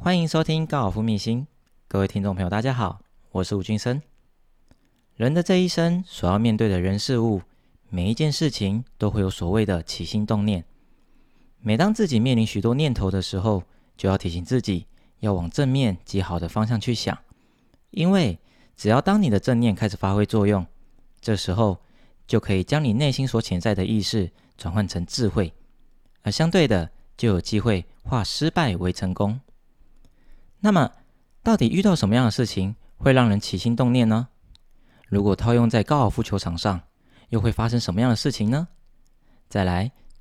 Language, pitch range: Chinese, 95-125 Hz